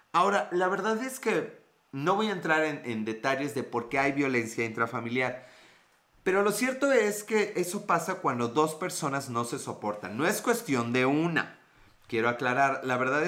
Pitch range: 120-160 Hz